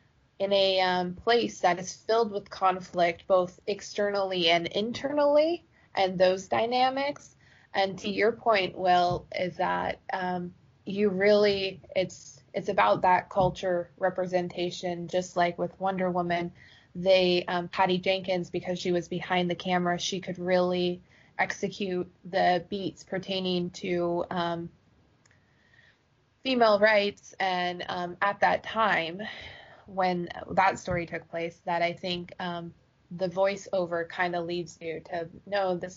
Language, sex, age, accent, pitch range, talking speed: English, female, 20-39, American, 175-195 Hz, 135 wpm